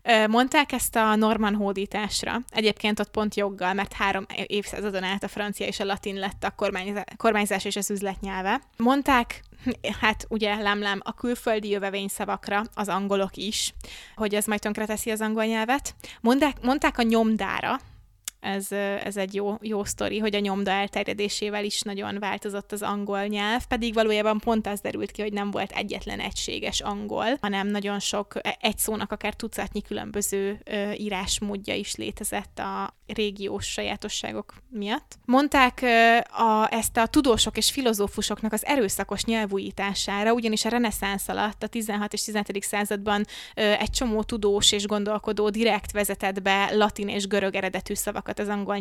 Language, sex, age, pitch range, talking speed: Hungarian, female, 20-39, 200-225 Hz, 150 wpm